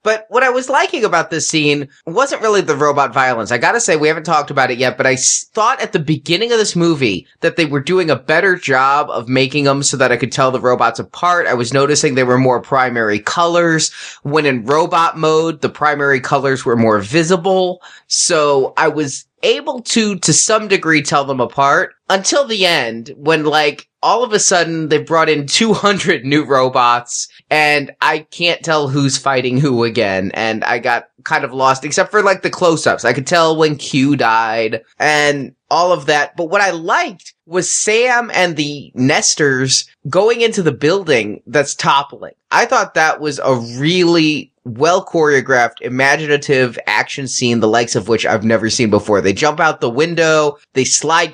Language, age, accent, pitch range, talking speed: English, 20-39, American, 130-170 Hz, 190 wpm